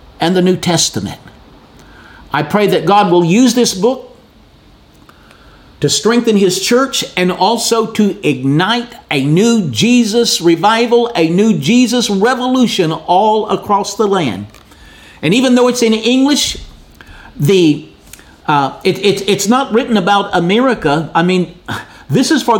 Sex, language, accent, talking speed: male, English, American, 140 wpm